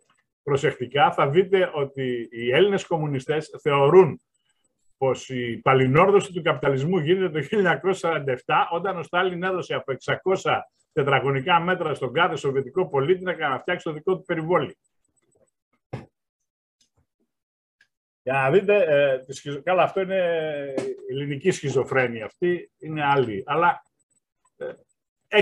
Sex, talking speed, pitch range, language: male, 120 wpm, 135-185 Hz, Greek